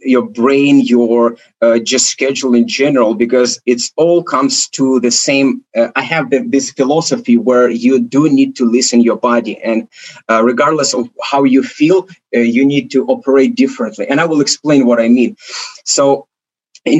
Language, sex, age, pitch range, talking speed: English, male, 30-49, 125-175 Hz, 175 wpm